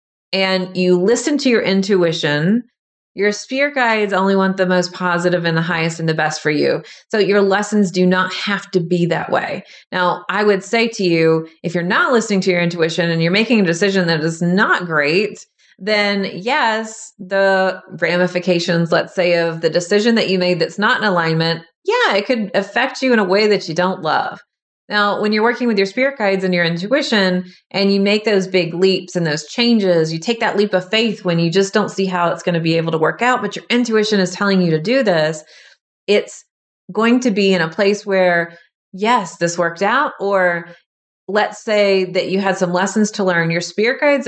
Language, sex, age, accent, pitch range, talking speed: English, female, 30-49, American, 175-220 Hz, 210 wpm